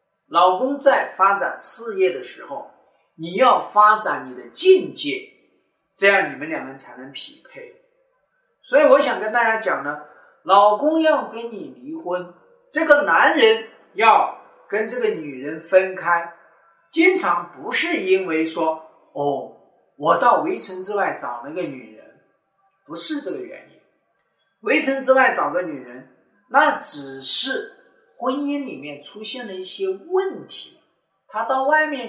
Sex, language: male, Chinese